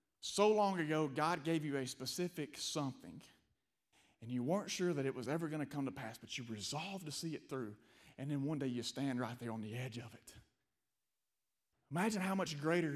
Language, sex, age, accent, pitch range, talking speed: English, male, 30-49, American, 140-180 Hz, 215 wpm